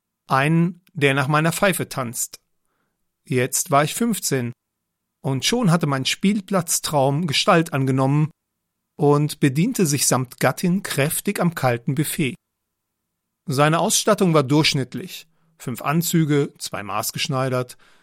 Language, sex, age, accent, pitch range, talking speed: German, male, 40-59, German, 125-165 Hz, 115 wpm